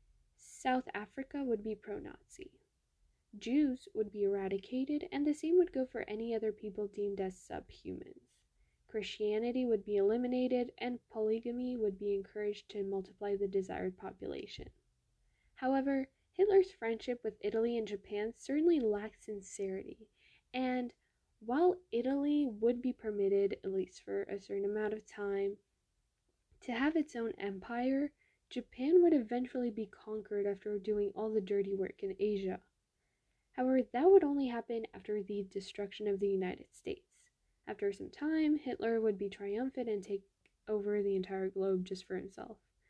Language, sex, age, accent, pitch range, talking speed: English, female, 10-29, American, 200-265 Hz, 150 wpm